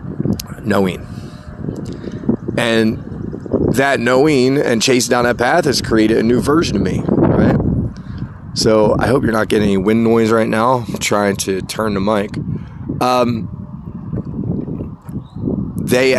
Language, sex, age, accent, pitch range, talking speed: English, male, 30-49, American, 105-130 Hz, 135 wpm